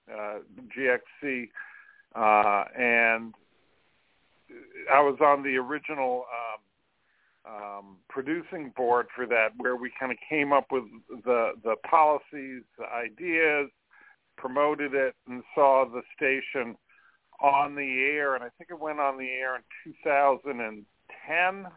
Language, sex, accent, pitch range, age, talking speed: English, male, American, 125-150 Hz, 50-69, 125 wpm